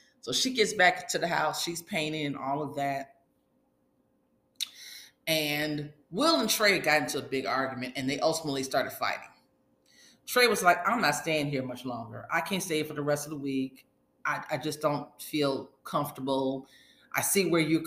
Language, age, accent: English, 30-49, American